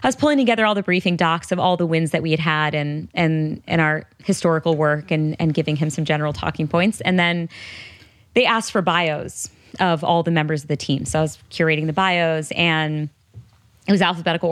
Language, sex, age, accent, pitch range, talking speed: English, female, 20-39, American, 155-200 Hz, 220 wpm